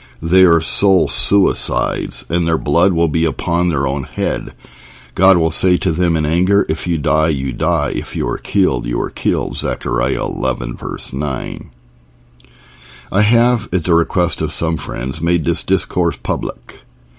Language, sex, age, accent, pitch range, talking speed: English, male, 50-69, American, 70-85 Hz, 170 wpm